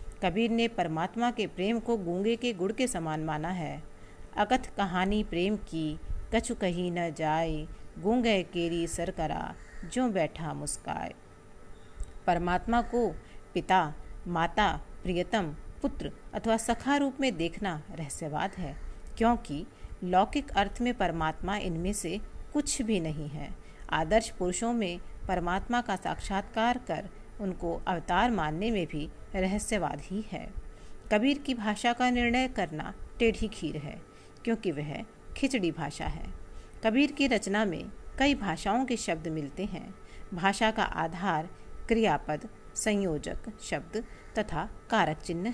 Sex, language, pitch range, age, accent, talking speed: female, Hindi, 165-225 Hz, 50-69, native, 130 wpm